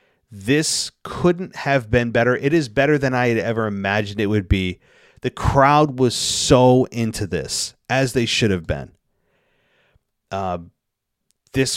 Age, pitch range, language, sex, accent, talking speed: 30-49, 105-130 Hz, English, male, American, 150 wpm